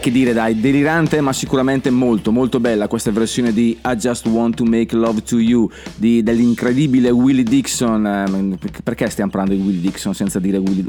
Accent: native